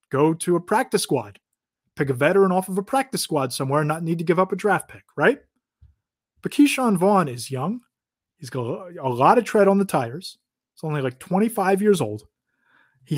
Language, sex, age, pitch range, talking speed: English, male, 30-49, 145-200 Hz, 205 wpm